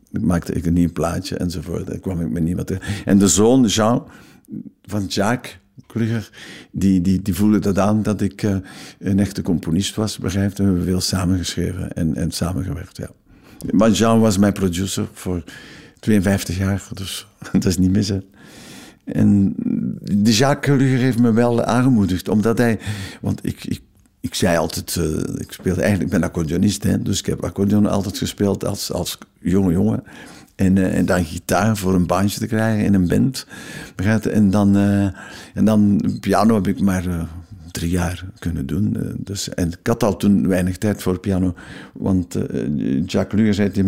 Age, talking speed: 60-79, 175 wpm